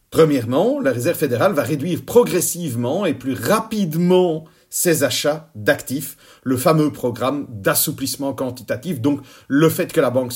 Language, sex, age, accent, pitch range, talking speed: French, male, 40-59, French, 125-185 Hz, 140 wpm